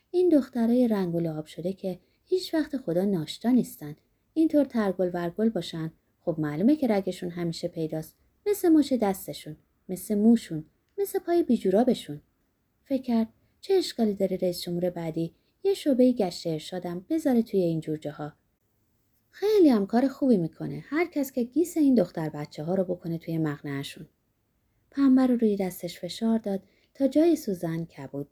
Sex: female